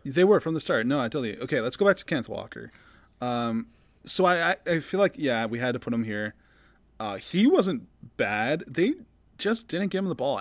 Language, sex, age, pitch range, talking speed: English, male, 20-39, 120-175 Hz, 230 wpm